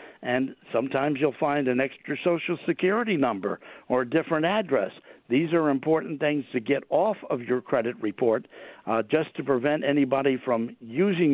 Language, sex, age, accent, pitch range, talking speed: English, male, 60-79, American, 135-165 Hz, 165 wpm